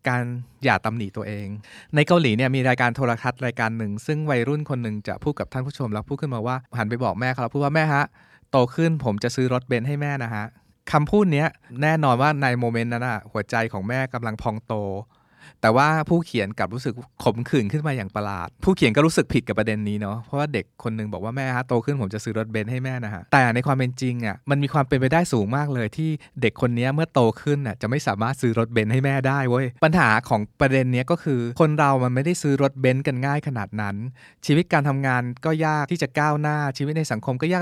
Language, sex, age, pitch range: Thai, male, 20-39, 115-150 Hz